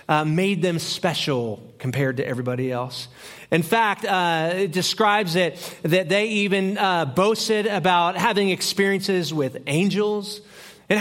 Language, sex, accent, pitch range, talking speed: English, male, American, 145-205 Hz, 135 wpm